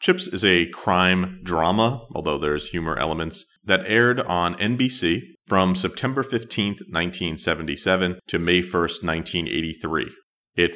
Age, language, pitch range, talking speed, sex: 40-59, English, 85-100 Hz, 130 wpm, male